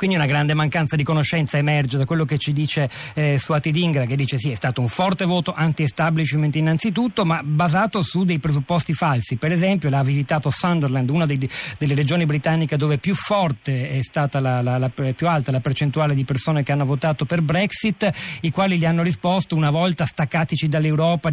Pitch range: 135-165 Hz